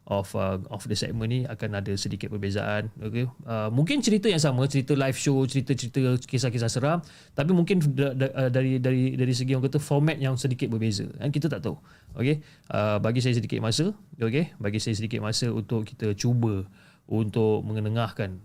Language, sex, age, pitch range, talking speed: Malay, male, 20-39, 110-150 Hz, 180 wpm